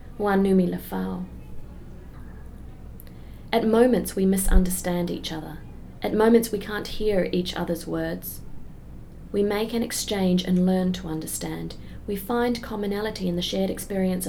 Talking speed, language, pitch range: 120 wpm, English, 170-195 Hz